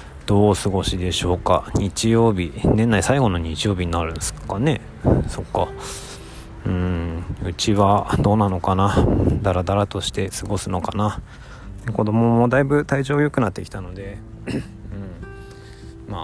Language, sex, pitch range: Japanese, male, 90-110 Hz